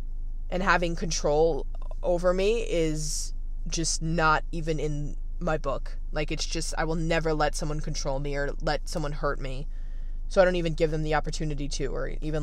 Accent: American